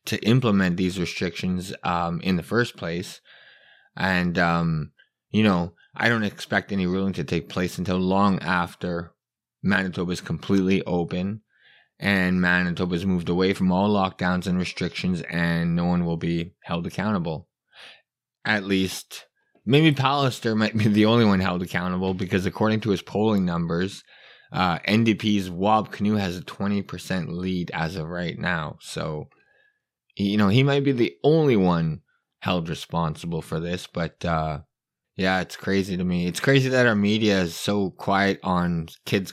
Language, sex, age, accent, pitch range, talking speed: English, male, 20-39, American, 90-105 Hz, 160 wpm